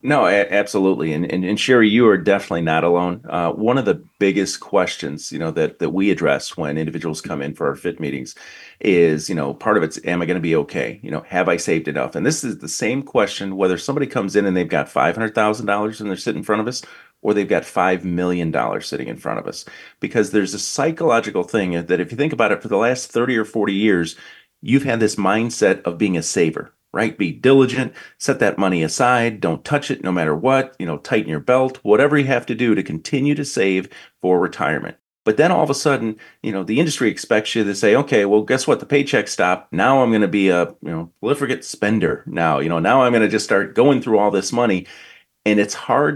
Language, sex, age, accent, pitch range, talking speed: English, male, 30-49, American, 90-120 Hz, 245 wpm